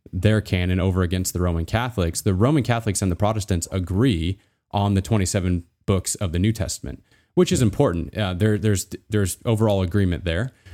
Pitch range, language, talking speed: 90-110 Hz, English, 180 wpm